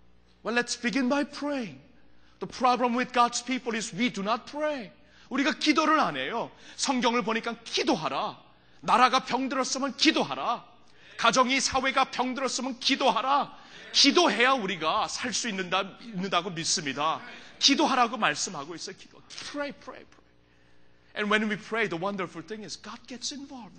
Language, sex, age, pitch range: Korean, male, 30-49, 170-255 Hz